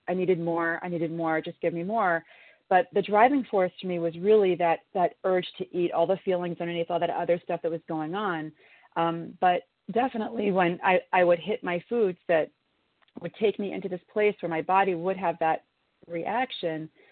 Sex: female